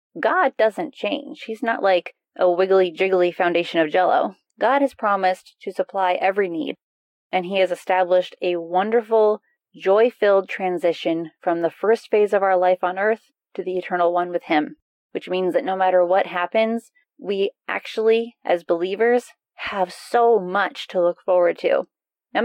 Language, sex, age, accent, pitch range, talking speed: English, female, 30-49, American, 180-225 Hz, 165 wpm